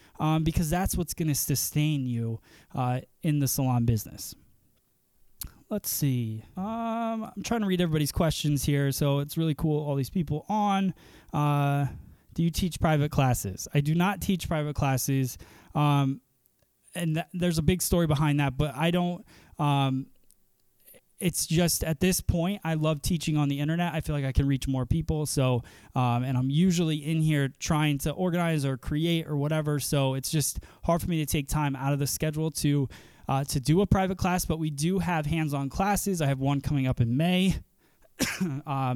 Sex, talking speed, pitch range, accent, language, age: male, 190 wpm, 135-165 Hz, American, English, 20-39